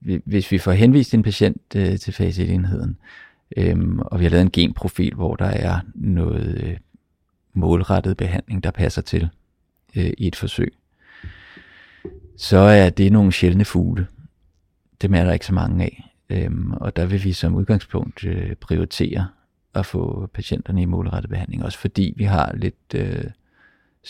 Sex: male